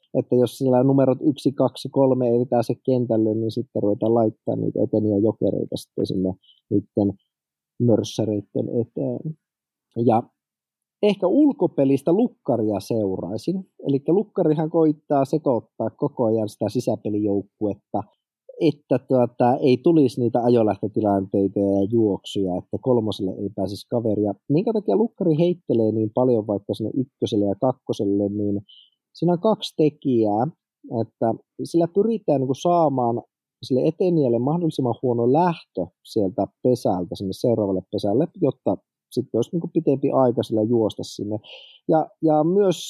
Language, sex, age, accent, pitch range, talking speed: Finnish, male, 30-49, native, 105-145 Hz, 125 wpm